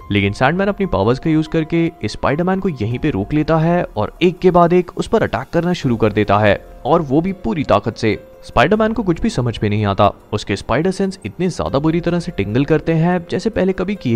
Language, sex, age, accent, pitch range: Hindi, male, 30-49, native, 110-175 Hz